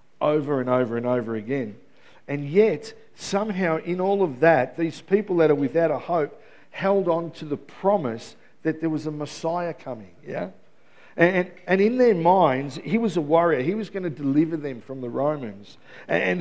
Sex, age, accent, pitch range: male, 50-69, Australian, 155-205 Hz